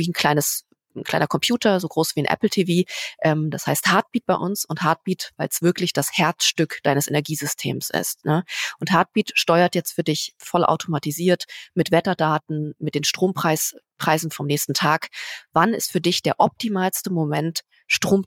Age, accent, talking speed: 30-49, German, 170 wpm